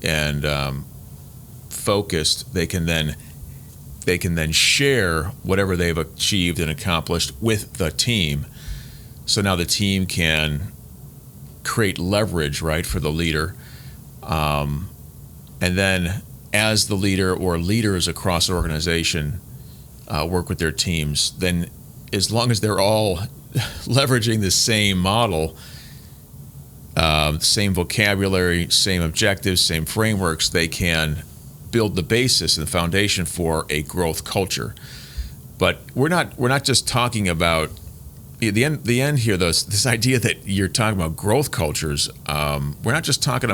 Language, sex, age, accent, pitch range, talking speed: English, male, 40-59, American, 80-110 Hz, 135 wpm